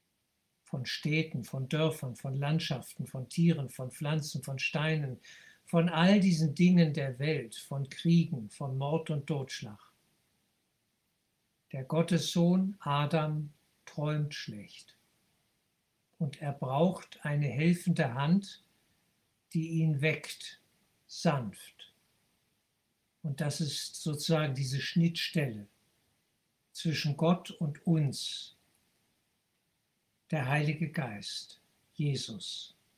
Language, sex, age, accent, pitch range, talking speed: German, male, 60-79, German, 145-170 Hz, 95 wpm